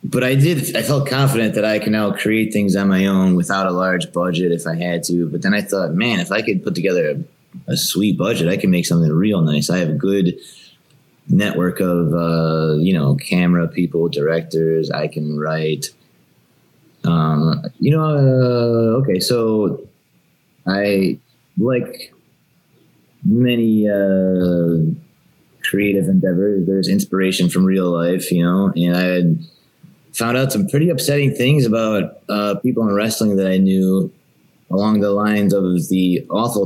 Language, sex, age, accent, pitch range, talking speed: English, male, 20-39, American, 90-110 Hz, 165 wpm